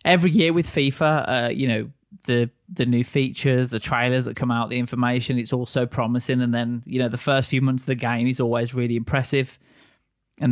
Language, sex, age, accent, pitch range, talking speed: English, male, 20-39, British, 115-145 Hz, 210 wpm